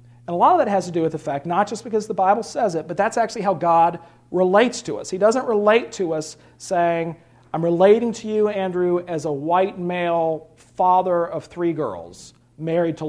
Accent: American